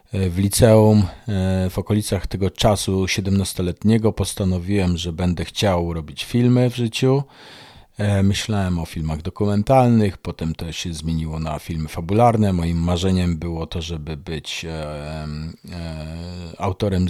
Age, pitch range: 40-59, 85-110 Hz